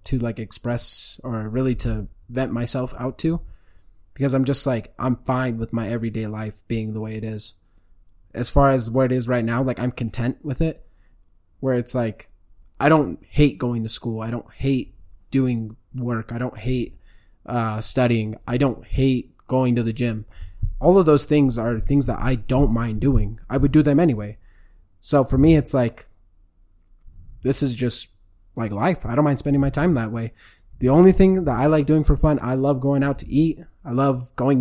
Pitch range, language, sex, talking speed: 110-135 Hz, English, male, 200 wpm